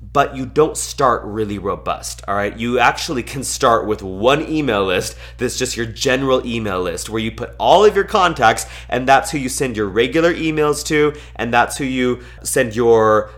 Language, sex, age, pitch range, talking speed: English, male, 30-49, 105-130 Hz, 195 wpm